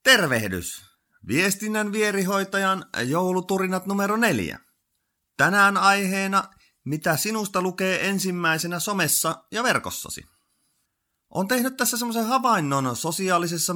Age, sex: 30-49, male